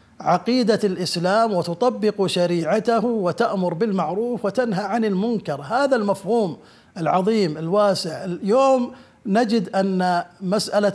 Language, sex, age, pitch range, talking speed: Arabic, male, 50-69, 180-230 Hz, 95 wpm